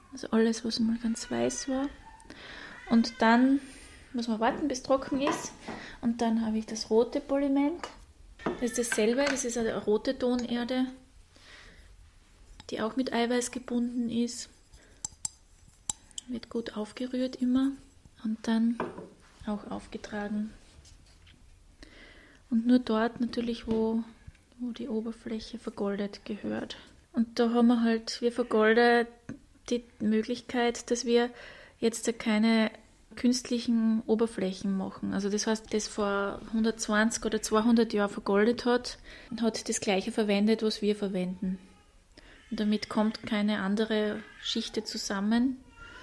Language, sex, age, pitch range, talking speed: German, female, 20-39, 215-245 Hz, 125 wpm